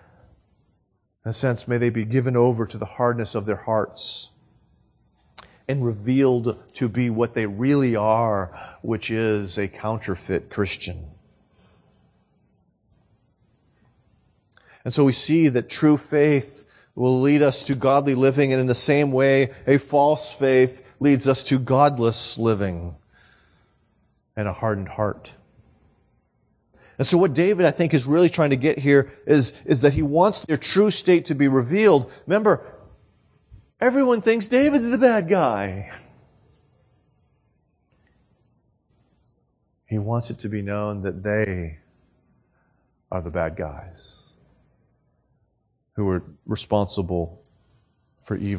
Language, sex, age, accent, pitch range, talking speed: English, male, 40-59, American, 105-145 Hz, 130 wpm